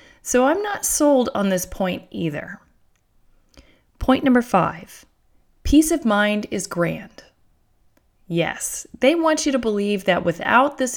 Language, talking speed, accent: English, 135 wpm, American